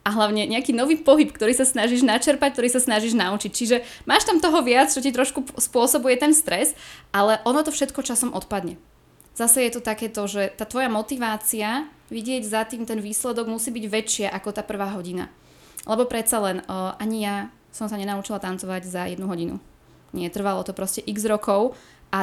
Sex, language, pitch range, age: female, Slovak, 200-245 Hz, 20-39